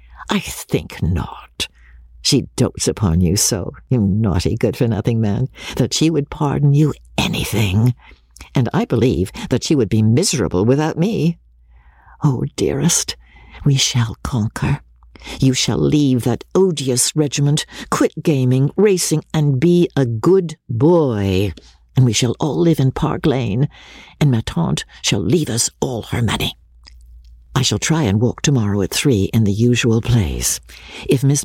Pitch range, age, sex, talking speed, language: 95-145 Hz, 60-79, female, 150 wpm, English